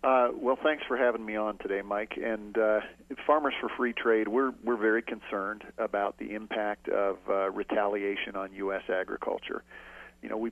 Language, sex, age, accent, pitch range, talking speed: English, male, 40-59, American, 105-120 Hz, 175 wpm